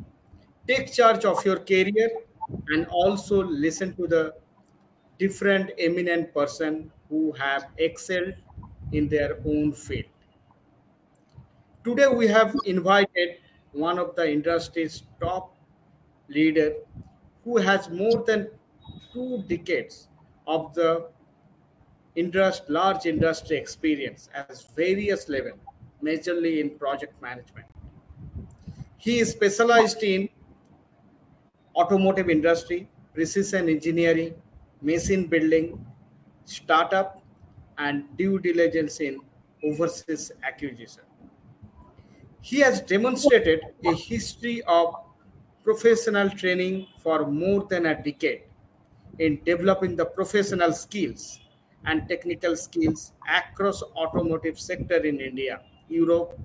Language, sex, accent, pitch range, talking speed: English, male, Indian, 150-190 Hz, 100 wpm